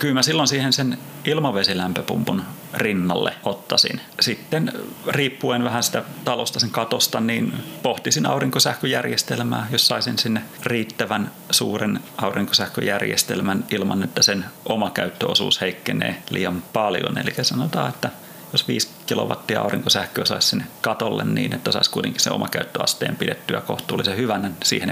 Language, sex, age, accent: Finnish, male, 30-49, native